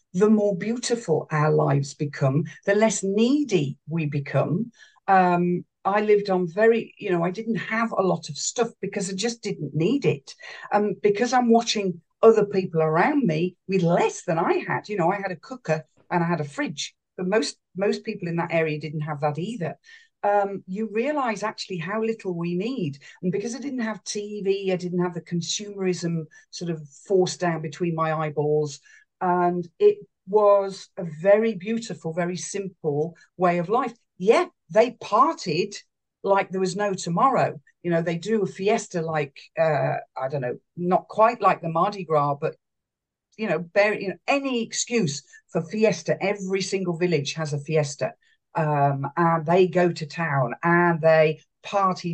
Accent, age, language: British, 50-69, English